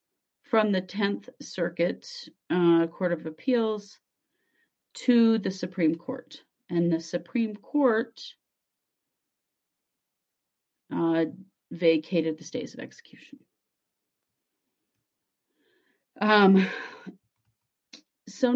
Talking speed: 80 wpm